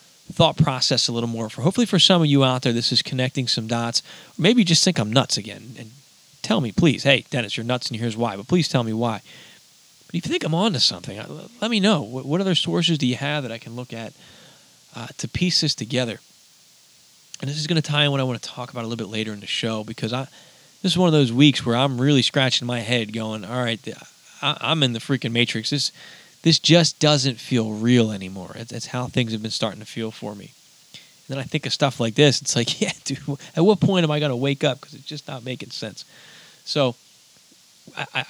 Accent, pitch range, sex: American, 120-155 Hz, male